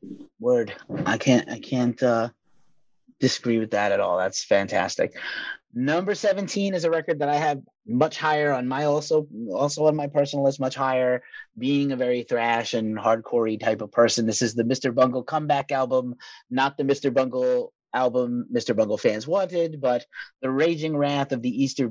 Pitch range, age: 115-150 Hz, 30-49